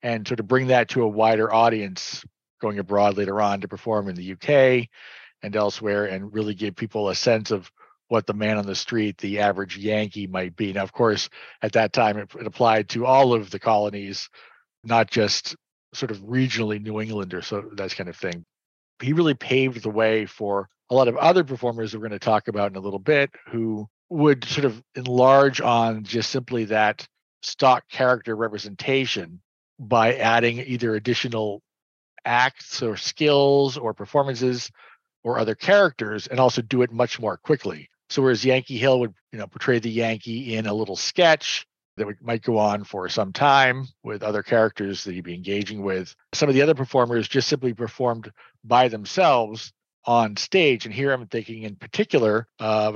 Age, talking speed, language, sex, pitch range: 40-59, 185 wpm, English, male, 105-125 Hz